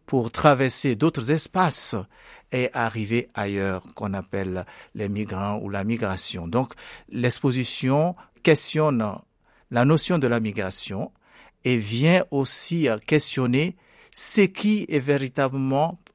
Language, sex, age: French, male, 60-79